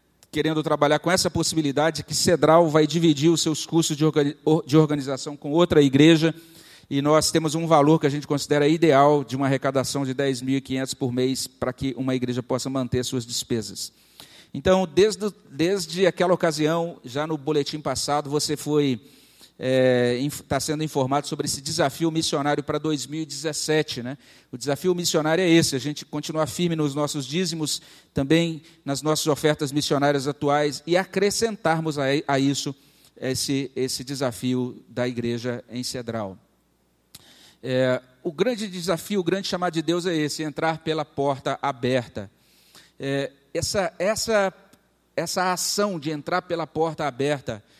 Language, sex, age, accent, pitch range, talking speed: Portuguese, male, 40-59, Brazilian, 135-165 Hz, 145 wpm